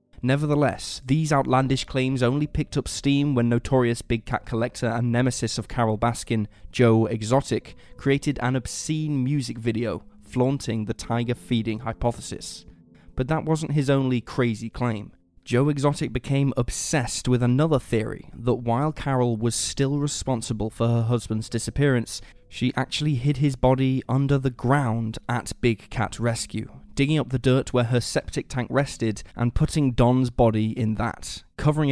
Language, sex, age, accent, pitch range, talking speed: English, male, 20-39, British, 115-135 Hz, 155 wpm